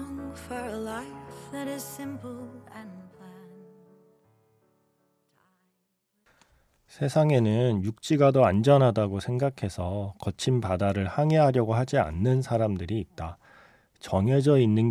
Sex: male